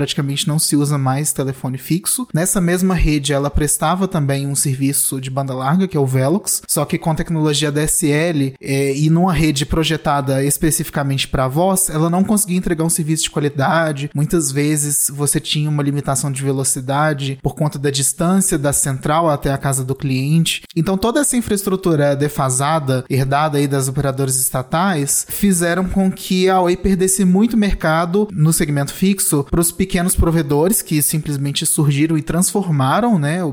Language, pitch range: Portuguese, 140-175 Hz